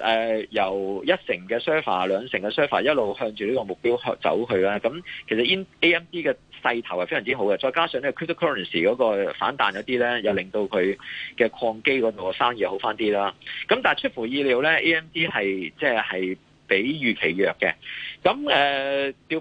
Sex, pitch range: male, 110-165 Hz